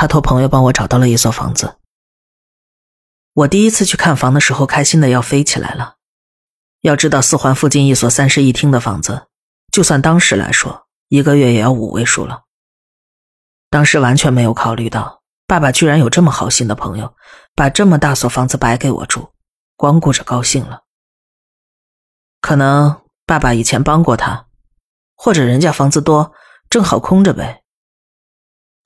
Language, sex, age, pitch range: Chinese, female, 30-49, 125-150 Hz